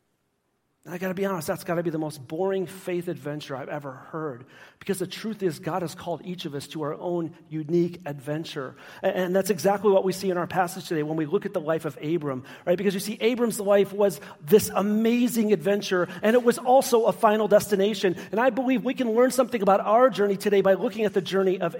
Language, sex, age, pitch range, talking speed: English, male, 40-59, 165-205 Hz, 230 wpm